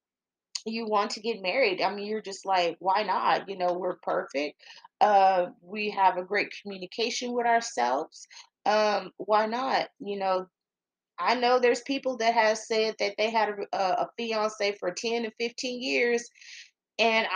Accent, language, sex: American, English, female